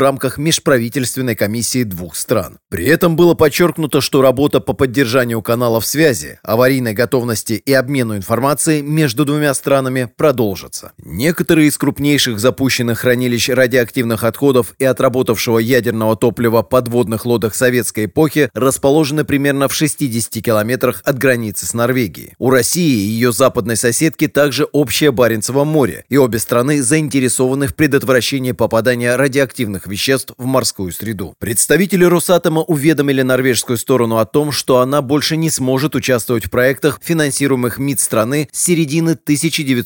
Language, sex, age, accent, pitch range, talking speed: Russian, male, 30-49, native, 120-145 Hz, 135 wpm